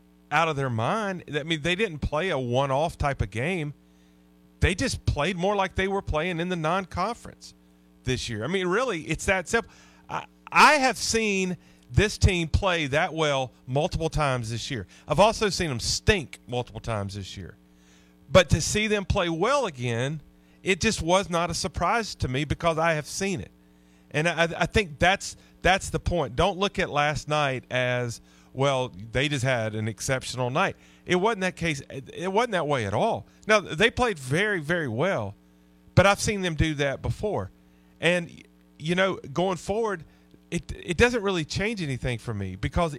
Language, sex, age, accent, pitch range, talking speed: English, male, 40-59, American, 110-185 Hz, 185 wpm